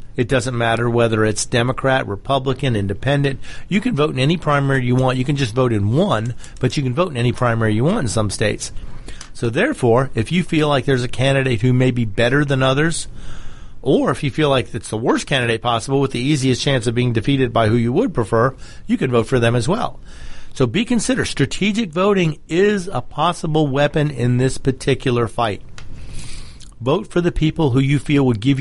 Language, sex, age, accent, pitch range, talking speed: English, male, 40-59, American, 120-155 Hz, 210 wpm